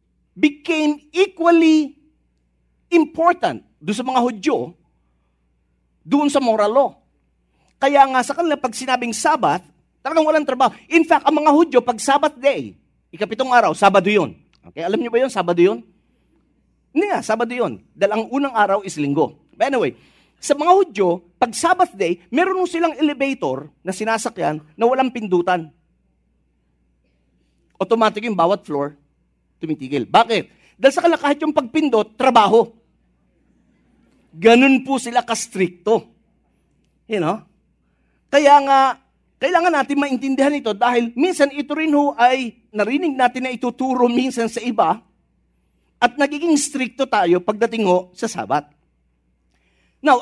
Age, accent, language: 40-59, Filipino, English